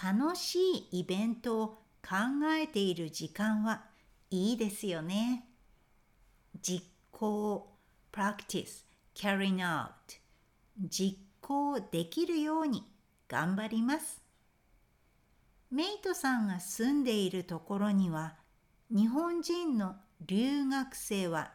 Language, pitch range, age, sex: Japanese, 190-275 Hz, 60-79, female